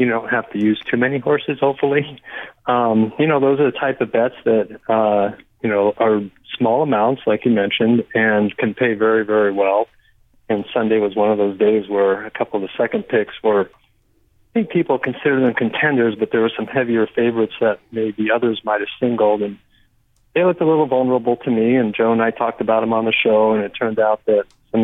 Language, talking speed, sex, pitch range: English, 220 wpm, male, 110-130 Hz